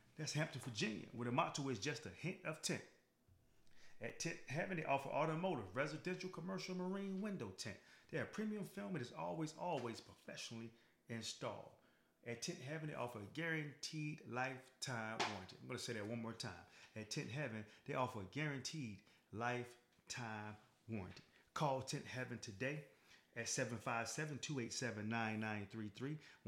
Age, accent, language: 40-59, American, English